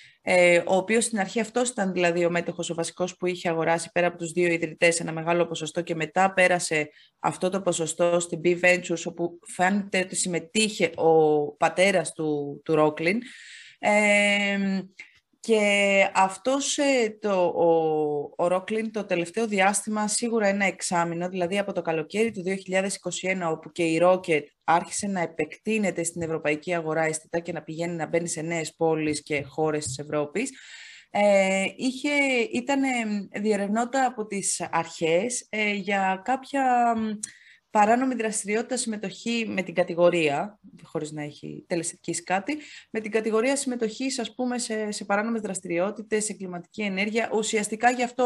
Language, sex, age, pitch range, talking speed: Greek, female, 20-39, 170-215 Hz, 145 wpm